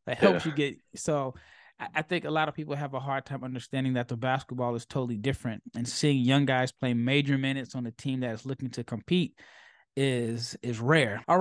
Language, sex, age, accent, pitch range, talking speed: English, male, 20-39, American, 130-160 Hz, 215 wpm